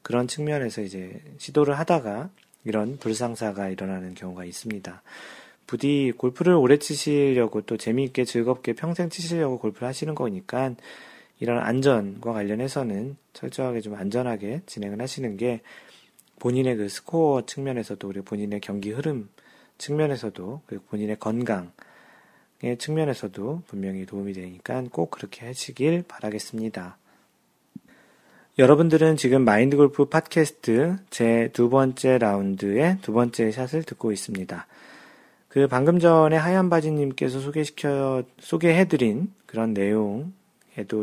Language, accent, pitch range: Korean, native, 105-150 Hz